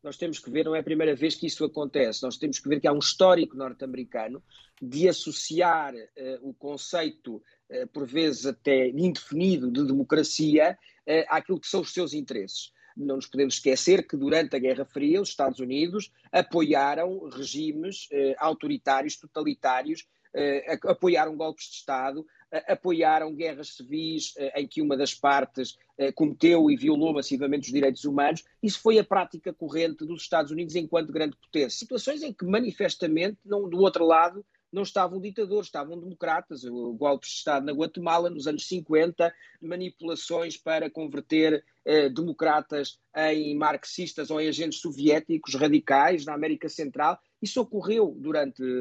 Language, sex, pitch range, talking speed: Portuguese, male, 150-190 Hz, 150 wpm